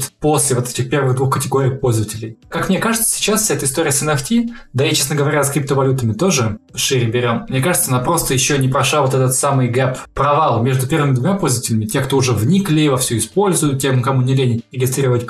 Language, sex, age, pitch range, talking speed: Russian, male, 20-39, 125-150 Hz, 205 wpm